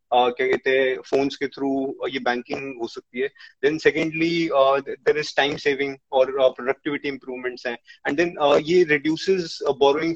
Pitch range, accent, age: 135-180 Hz, Indian, 20-39